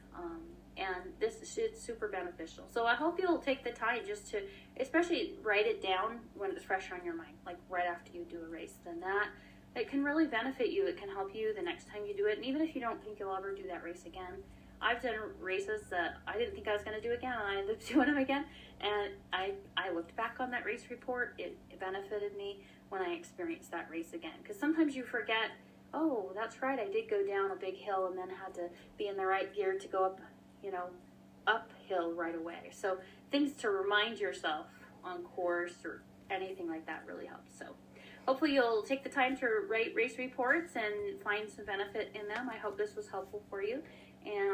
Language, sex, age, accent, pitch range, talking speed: English, female, 20-39, American, 190-275 Hz, 225 wpm